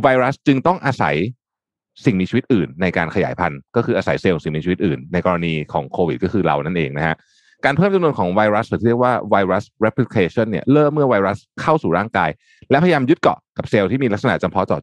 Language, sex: Thai, male